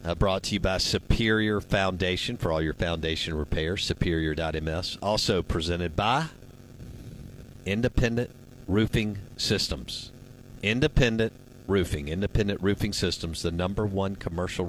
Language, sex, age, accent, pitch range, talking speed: English, male, 50-69, American, 90-125 Hz, 115 wpm